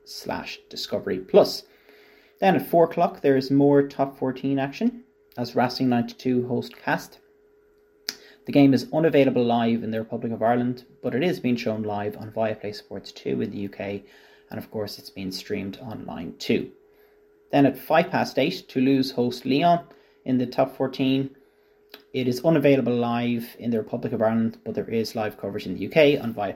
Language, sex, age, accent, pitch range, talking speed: English, male, 30-49, Irish, 125-190 Hz, 180 wpm